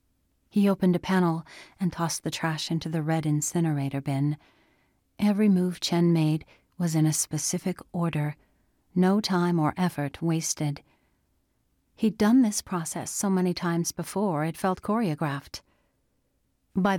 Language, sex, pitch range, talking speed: English, female, 160-190 Hz, 140 wpm